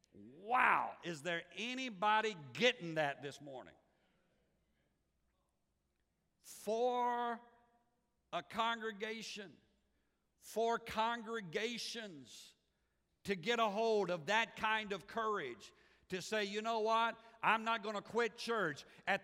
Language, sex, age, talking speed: English, male, 50-69, 105 wpm